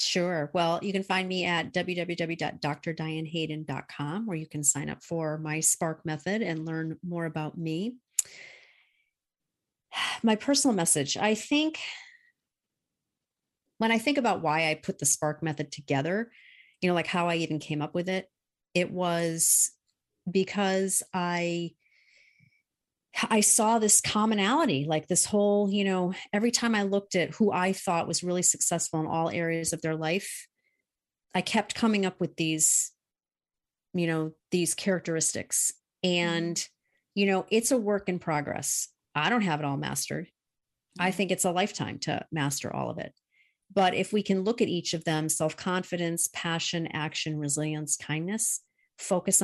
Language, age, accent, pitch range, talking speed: English, 40-59, American, 160-195 Hz, 155 wpm